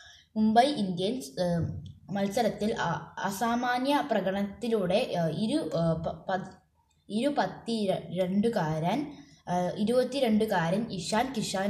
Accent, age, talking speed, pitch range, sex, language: native, 20-39, 55 wpm, 175-245 Hz, female, Malayalam